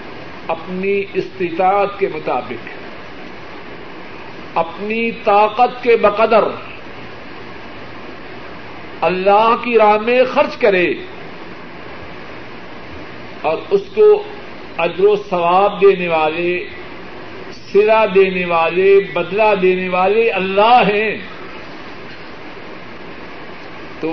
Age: 50-69